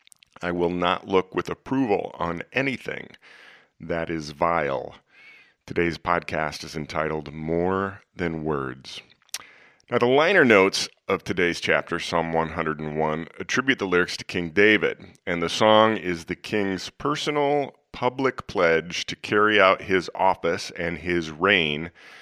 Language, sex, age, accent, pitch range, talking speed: English, male, 40-59, American, 85-100 Hz, 135 wpm